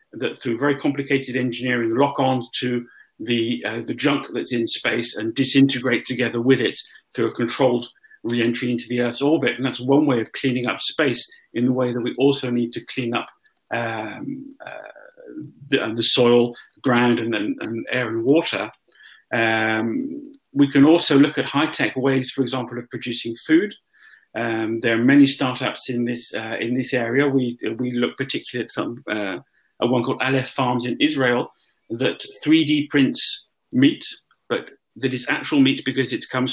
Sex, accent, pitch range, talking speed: male, British, 120-145 Hz, 180 wpm